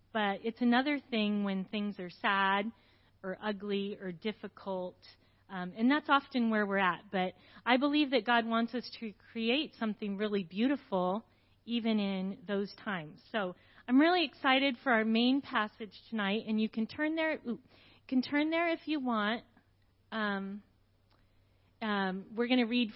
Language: English